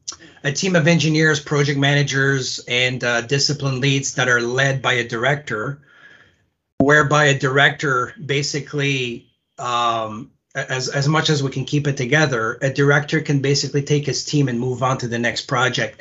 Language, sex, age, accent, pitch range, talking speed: English, male, 40-59, American, 120-145 Hz, 165 wpm